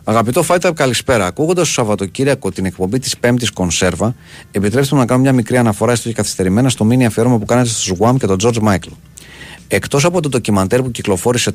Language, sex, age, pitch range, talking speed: Greek, male, 40-59, 100-135 Hz, 195 wpm